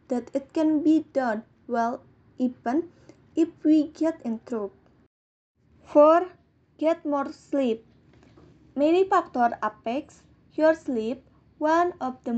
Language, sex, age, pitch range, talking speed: English, female, 20-39, 240-305 Hz, 115 wpm